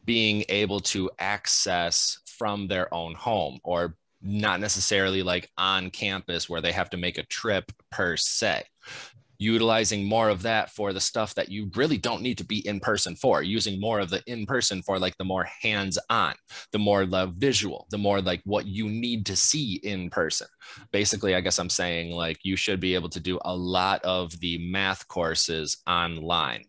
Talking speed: 185 wpm